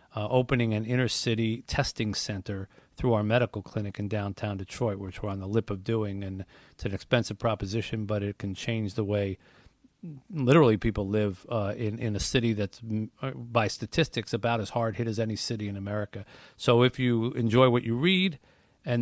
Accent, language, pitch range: American, English, 100-120 Hz